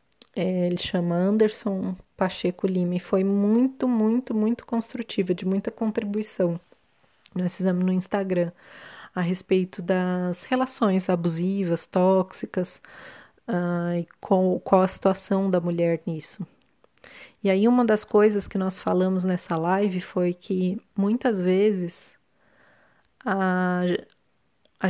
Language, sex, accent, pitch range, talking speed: Portuguese, female, Brazilian, 175-200 Hz, 120 wpm